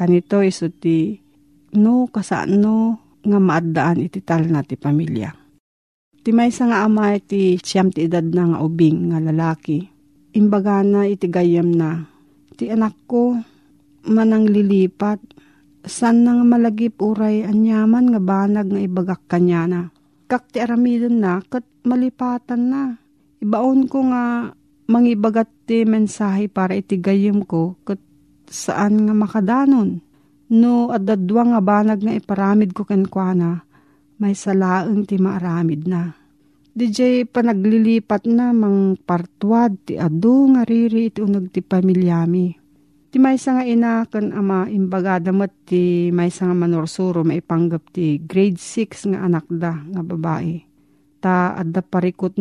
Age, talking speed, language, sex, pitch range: 50-69, 135 wpm, Filipino, female, 170-220 Hz